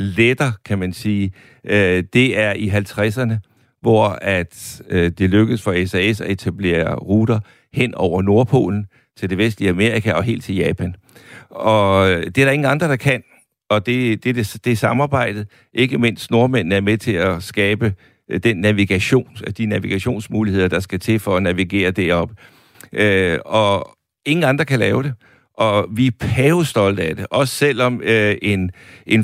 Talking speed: 160 wpm